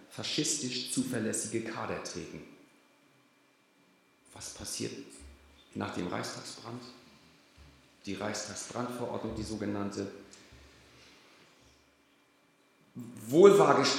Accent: German